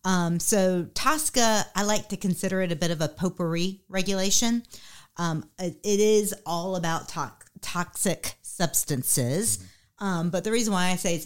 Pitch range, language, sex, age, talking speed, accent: 155-200 Hz, English, female, 40-59, 165 wpm, American